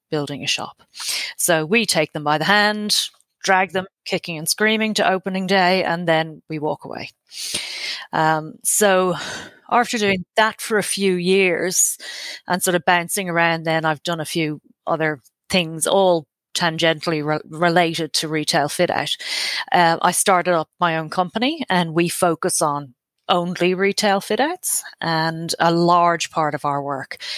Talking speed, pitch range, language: 160 wpm, 160-205 Hz, English